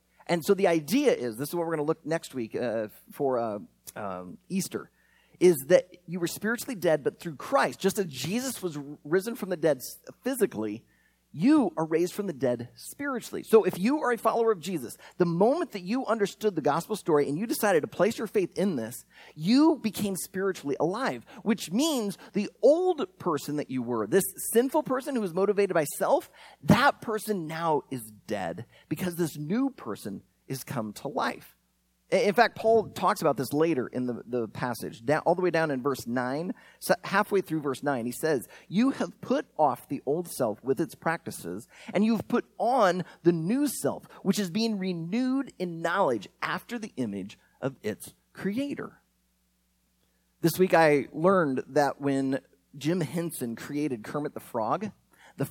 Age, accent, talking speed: 30-49, American, 180 wpm